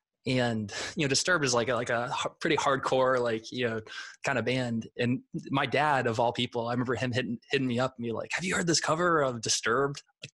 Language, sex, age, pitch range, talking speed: English, male, 20-39, 110-135 Hz, 240 wpm